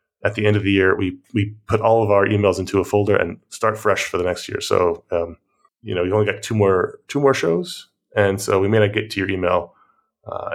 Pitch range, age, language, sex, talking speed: 95-115 Hz, 30-49, English, male, 255 wpm